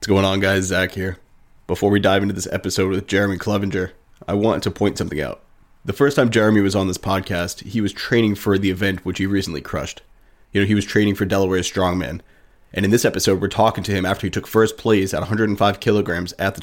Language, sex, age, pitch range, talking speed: English, male, 20-39, 95-115 Hz, 235 wpm